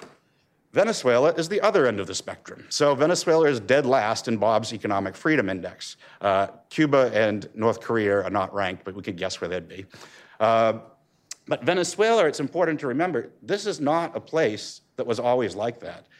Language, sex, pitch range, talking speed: English, male, 115-155 Hz, 185 wpm